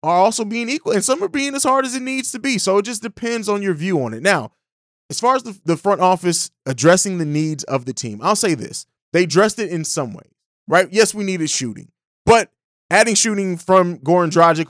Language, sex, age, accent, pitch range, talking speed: English, male, 20-39, American, 160-220 Hz, 235 wpm